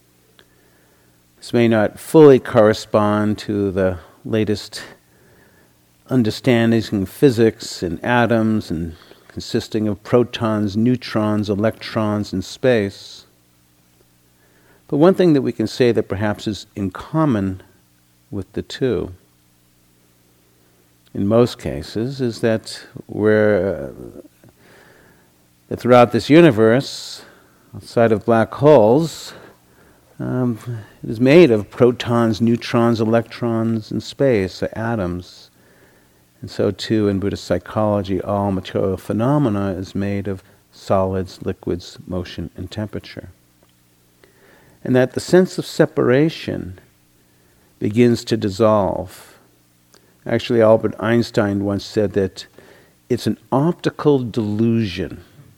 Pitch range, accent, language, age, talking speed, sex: 70-115 Hz, American, English, 50-69, 105 wpm, male